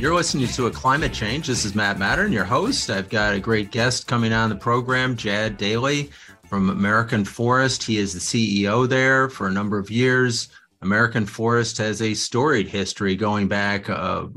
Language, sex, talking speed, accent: English, male, 190 wpm, American